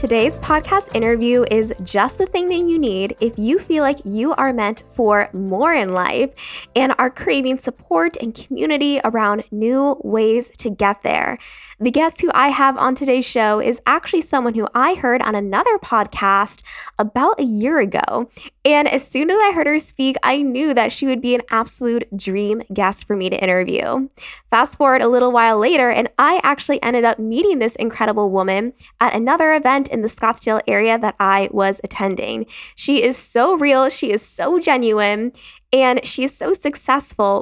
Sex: female